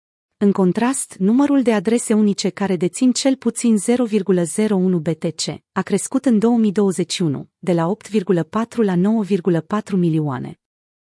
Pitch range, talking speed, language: 180-225 Hz, 120 wpm, Romanian